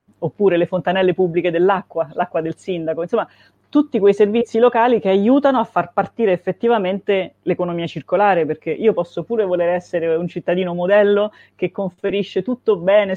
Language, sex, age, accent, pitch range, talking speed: Italian, female, 30-49, native, 165-200 Hz, 155 wpm